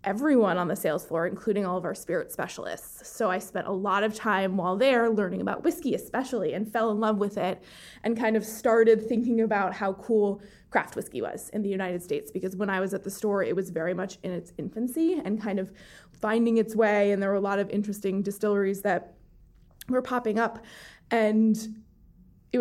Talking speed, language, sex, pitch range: 210 wpm, English, female, 195-225 Hz